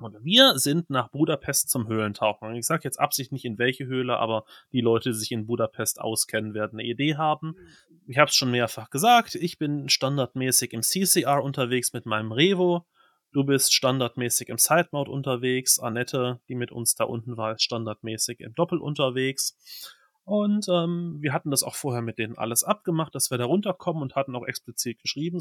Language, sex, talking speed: German, male, 190 wpm